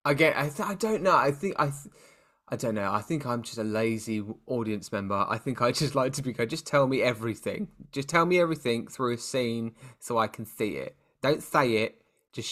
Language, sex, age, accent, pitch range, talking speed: English, male, 20-39, British, 105-140 Hz, 230 wpm